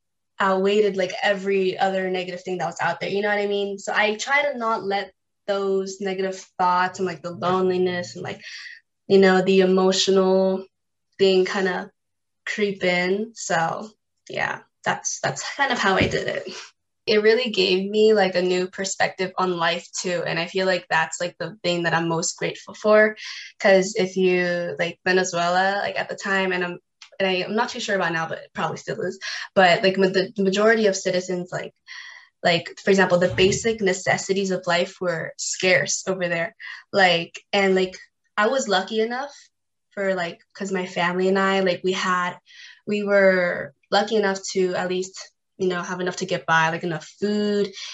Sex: female